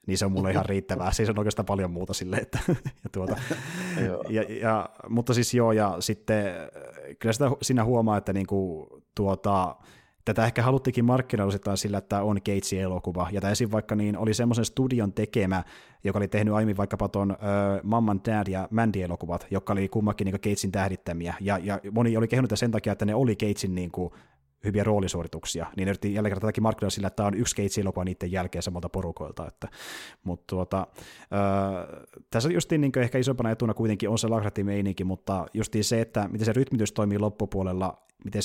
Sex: male